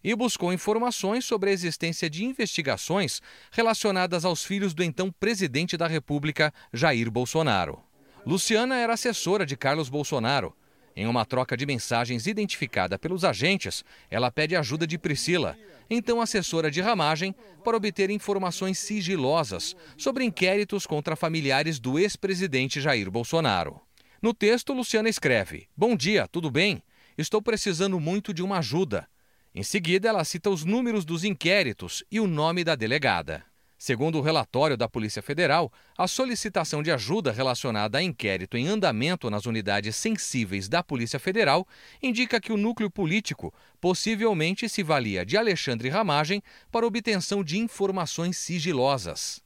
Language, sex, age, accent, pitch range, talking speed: Portuguese, male, 40-59, Brazilian, 145-205 Hz, 140 wpm